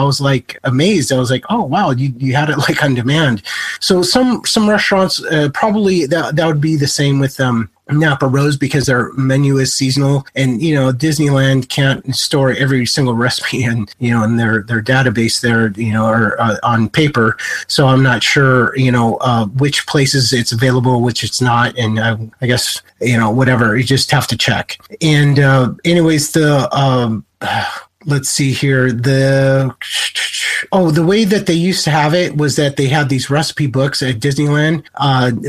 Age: 30-49